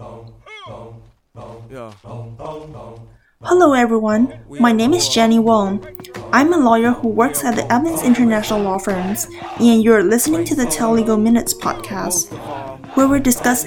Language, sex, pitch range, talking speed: English, female, 215-255 Hz, 130 wpm